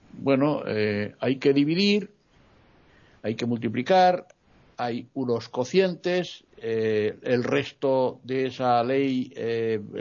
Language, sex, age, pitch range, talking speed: Spanish, male, 60-79, 115-155 Hz, 110 wpm